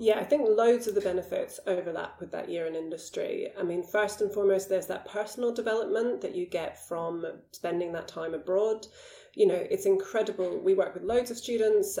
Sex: female